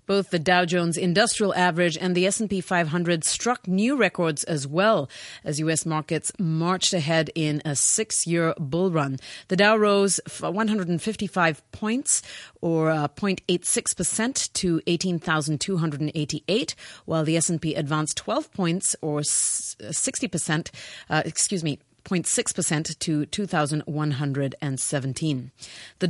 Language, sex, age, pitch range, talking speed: English, female, 30-49, 155-200 Hz, 115 wpm